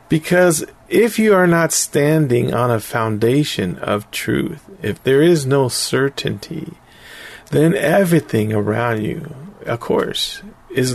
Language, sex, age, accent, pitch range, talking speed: English, male, 40-59, American, 125-170 Hz, 125 wpm